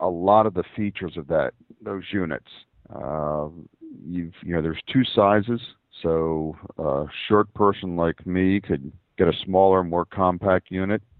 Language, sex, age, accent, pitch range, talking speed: English, male, 50-69, American, 80-95 Hz, 155 wpm